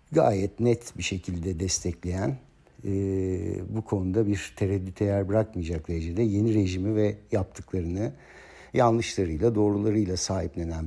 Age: 60-79